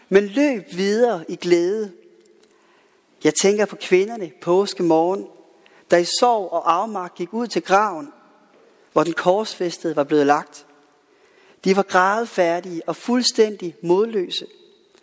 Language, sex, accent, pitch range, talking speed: Danish, male, native, 180-240 Hz, 130 wpm